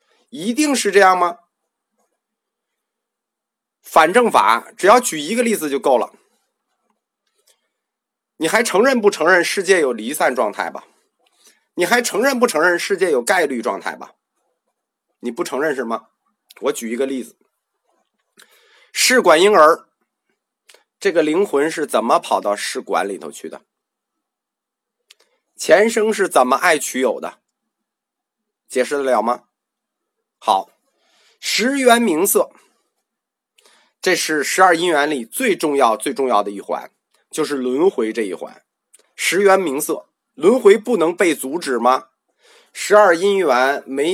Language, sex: Chinese, male